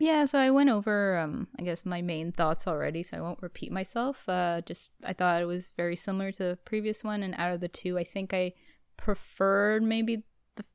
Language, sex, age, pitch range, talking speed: English, female, 10-29, 170-205 Hz, 225 wpm